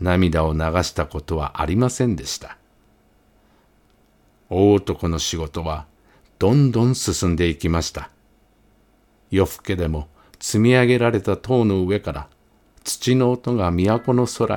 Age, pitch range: 50-69, 85-120 Hz